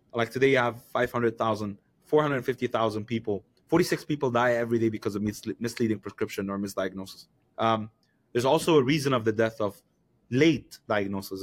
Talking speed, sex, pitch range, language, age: 160 wpm, male, 110-140 Hz, English, 20-39